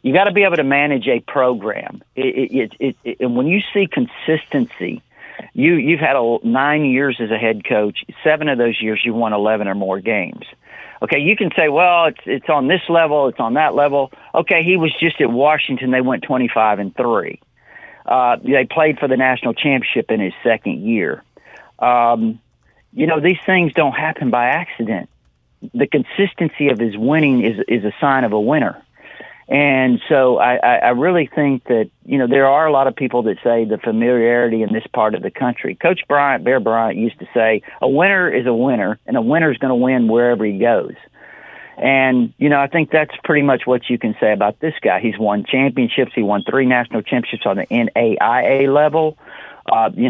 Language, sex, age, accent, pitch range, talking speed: English, male, 40-59, American, 115-160 Hz, 205 wpm